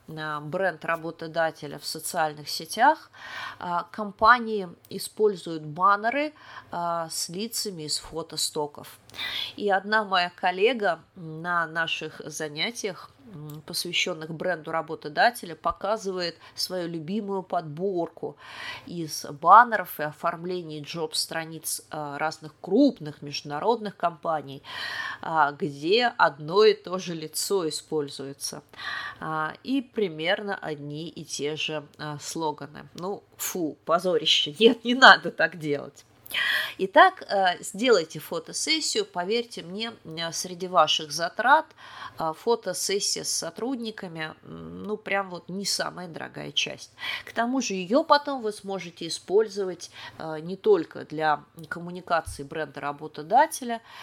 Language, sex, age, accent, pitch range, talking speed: Russian, female, 30-49, native, 155-215 Hz, 100 wpm